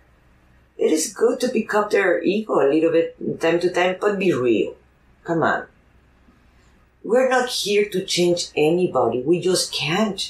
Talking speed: 165 wpm